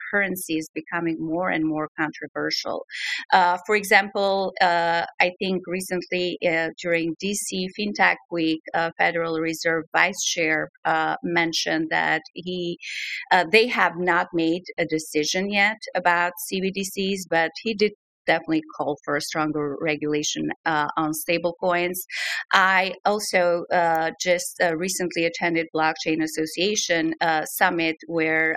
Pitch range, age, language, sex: 160-185 Hz, 30-49, English, female